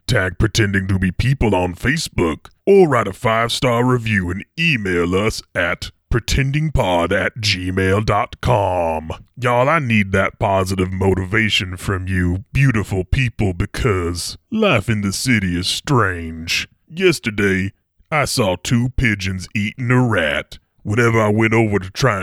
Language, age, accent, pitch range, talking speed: English, 30-49, American, 95-120 Hz, 135 wpm